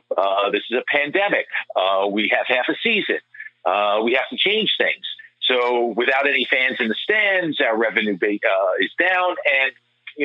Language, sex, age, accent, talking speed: English, male, 50-69, American, 185 wpm